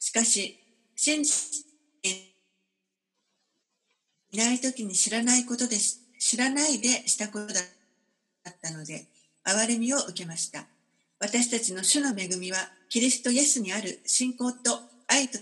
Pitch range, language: 200-255 Hz, Japanese